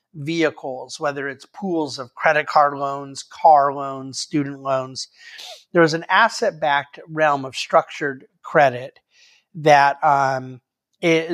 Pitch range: 140-175 Hz